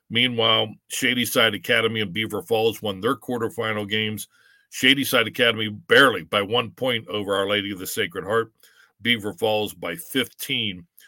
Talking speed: 145 wpm